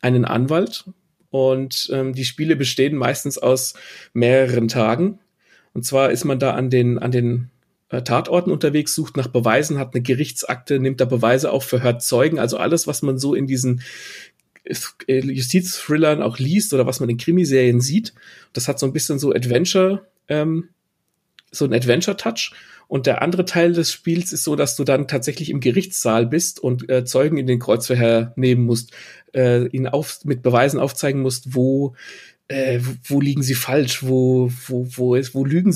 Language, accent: German, German